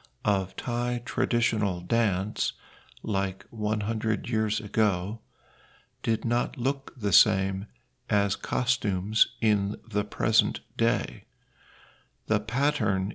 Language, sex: Thai, male